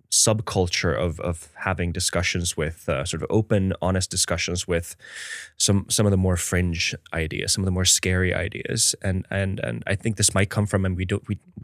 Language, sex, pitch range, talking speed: Finnish, male, 85-100 Hz, 200 wpm